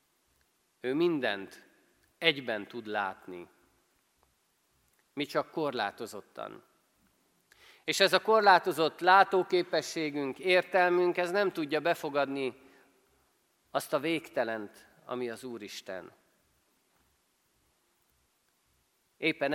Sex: male